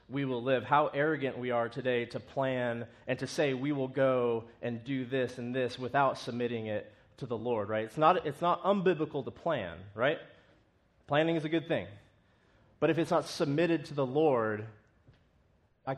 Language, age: English, 30-49